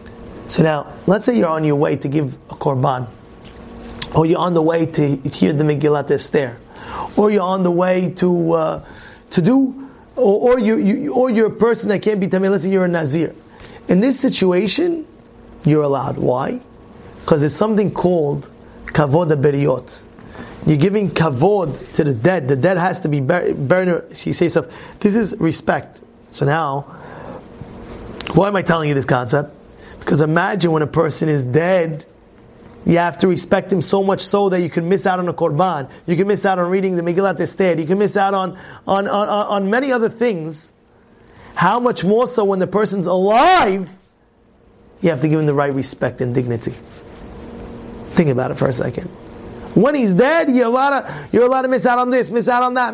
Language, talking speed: English, 190 wpm